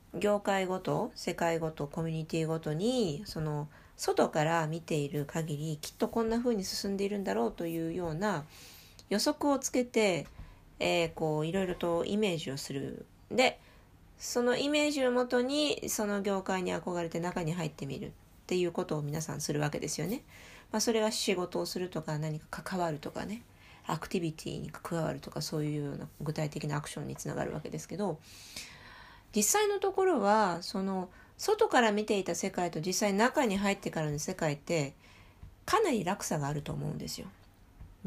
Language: Japanese